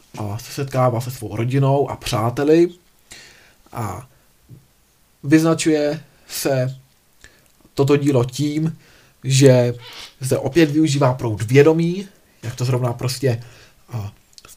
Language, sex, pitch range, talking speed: Czech, male, 125-155 Hz, 105 wpm